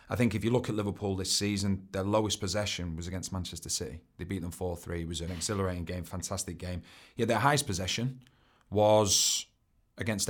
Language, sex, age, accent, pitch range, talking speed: English, male, 30-49, British, 95-110 Hz, 190 wpm